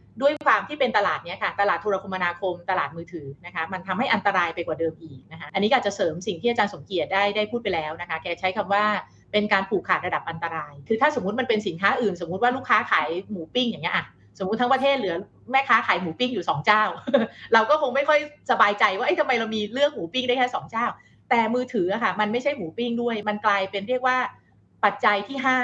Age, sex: 30-49, female